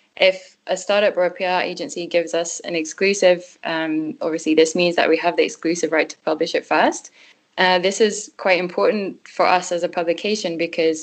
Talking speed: 195 wpm